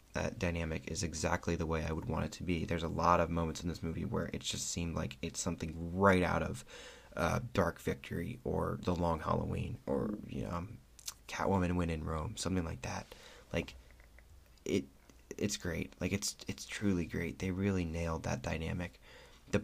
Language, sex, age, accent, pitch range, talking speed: English, male, 20-39, American, 85-100 Hz, 190 wpm